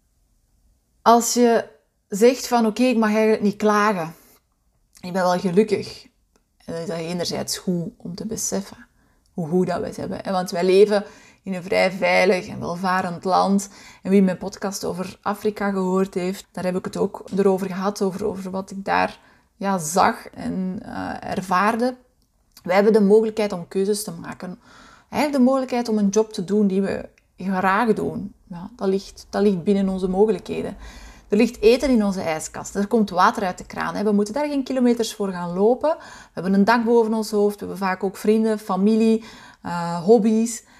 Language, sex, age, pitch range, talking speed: Dutch, female, 20-39, 185-220 Hz, 195 wpm